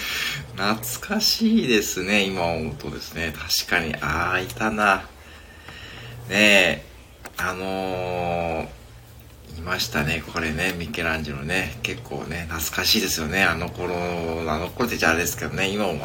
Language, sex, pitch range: Japanese, male, 75-110 Hz